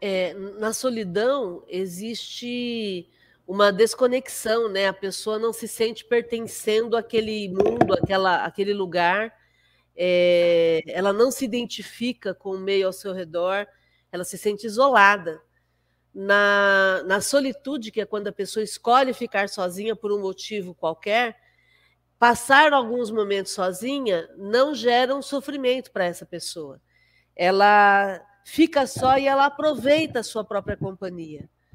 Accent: Brazilian